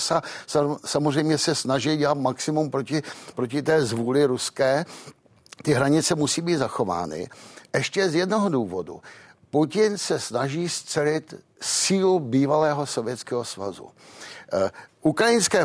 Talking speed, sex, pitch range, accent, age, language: 115 wpm, male, 135-165 Hz, native, 60-79, Czech